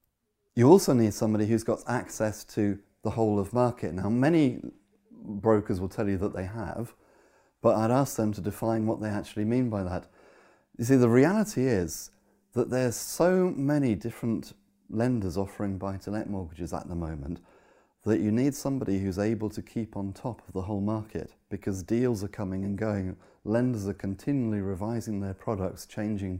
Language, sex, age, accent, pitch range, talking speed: English, male, 30-49, British, 100-120 Hz, 175 wpm